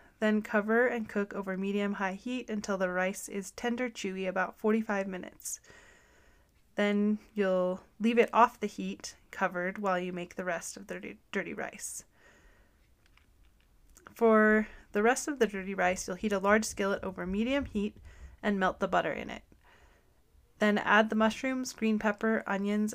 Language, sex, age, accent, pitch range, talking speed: English, female, 20-39, American, 190-225 Hz, 160 wpm